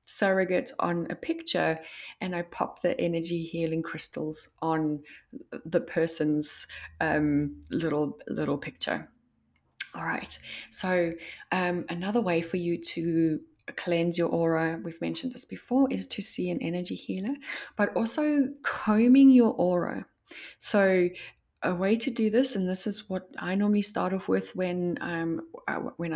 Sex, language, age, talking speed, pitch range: female, English, 20-39, 145 wpm, 165-225 Hz